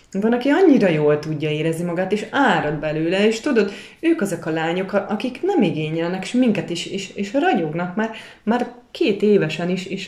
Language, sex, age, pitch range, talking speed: English, female, 30-49, 150-220 Hz, 180 wpm